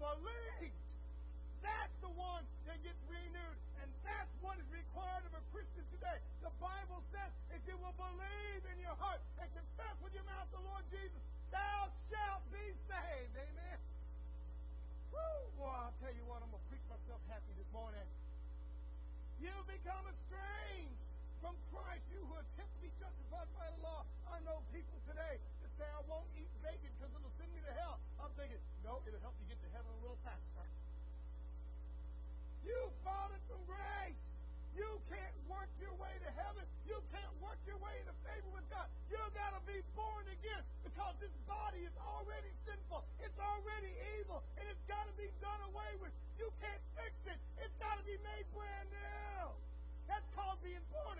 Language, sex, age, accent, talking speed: English, male, 40-59, American, 180 wpm